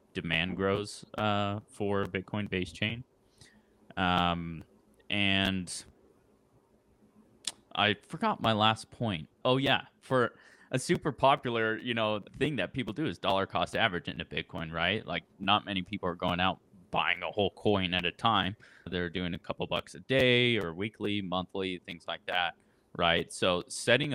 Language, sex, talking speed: English, male, 155 wpm